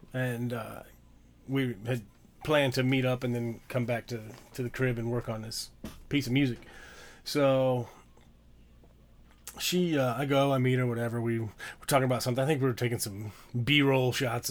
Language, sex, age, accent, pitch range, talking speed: English, male, 30-49, American, 115-135 Hz, 195 wpm